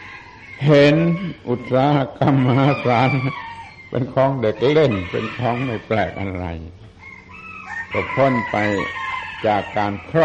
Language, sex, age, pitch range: Thai, male, 60-79, 95-125 Hz